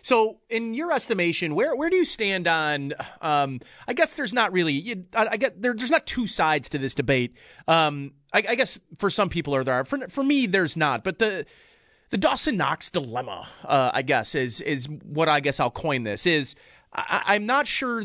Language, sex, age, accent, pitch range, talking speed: English, male, 30-49, American, 145-210 Hz, 215 wpm